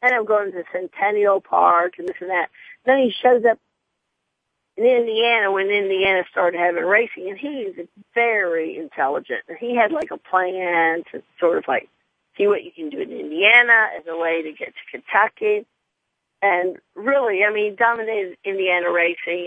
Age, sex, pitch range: 40-59, female, 175-235 Hz